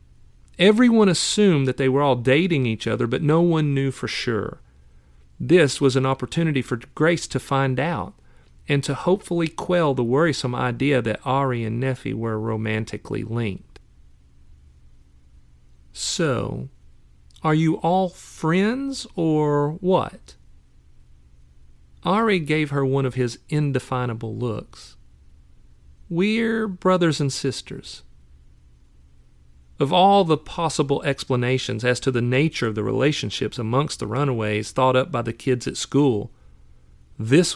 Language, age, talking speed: English, 40-59, 130 wpm